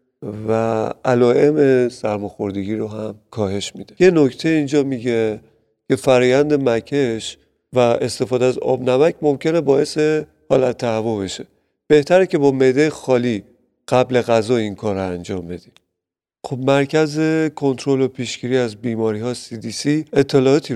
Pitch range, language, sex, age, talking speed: 110-135 Hz, Persian, male, 40-59, 125 wpm